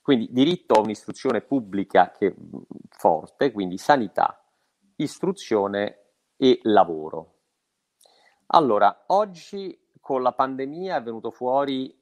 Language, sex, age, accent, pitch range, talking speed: Italian, male, 40-59, native, 100-140 Hz, 100 wpm